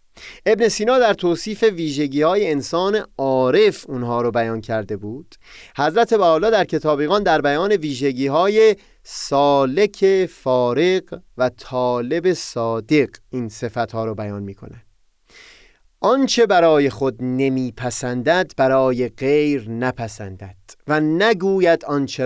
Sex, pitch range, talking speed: male, 120-165 Hz, 115 wpm